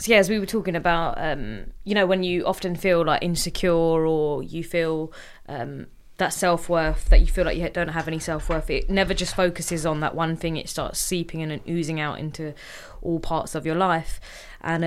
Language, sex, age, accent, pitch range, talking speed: English, female, 20-39, British, 155-180 Hz, 215 wpm